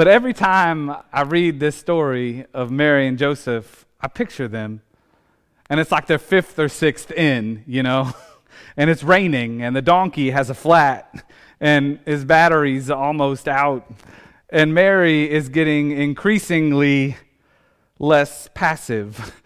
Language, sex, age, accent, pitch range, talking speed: English, male, 30-49, American, 120-160 Hz, 140 wpm